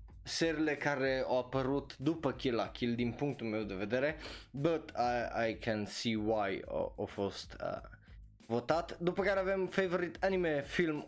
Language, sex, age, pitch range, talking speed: Romanian, male, 20-39, 110-150 Hz, 155 wpm